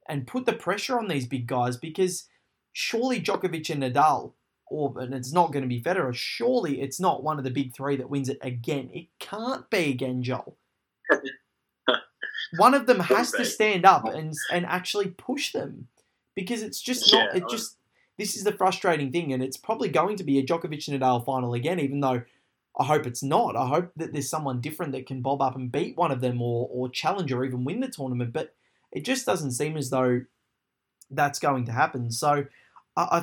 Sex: male